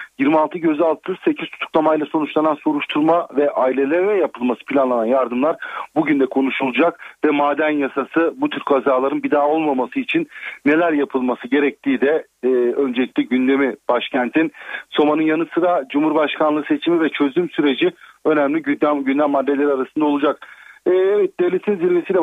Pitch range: 135-165 Hz